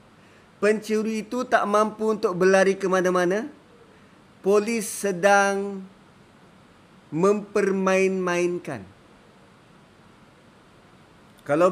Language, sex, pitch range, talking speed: Malay, male, 185-275 Hz, 60 wpm